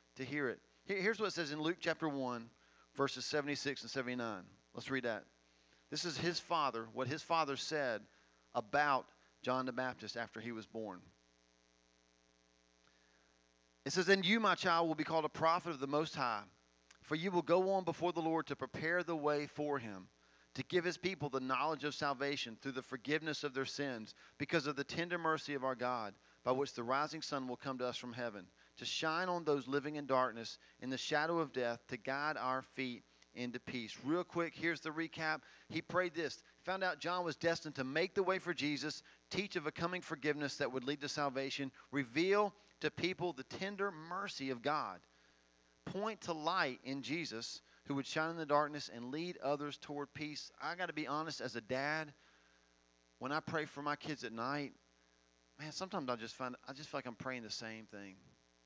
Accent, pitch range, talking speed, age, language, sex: American, 115-160 Hz, 200 wpm, 40-59, English, male